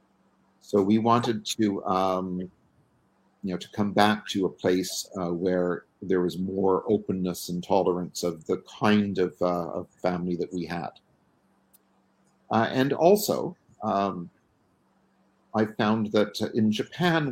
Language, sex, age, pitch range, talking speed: English, male, 50-69, 90-110 Hz, 140 wpm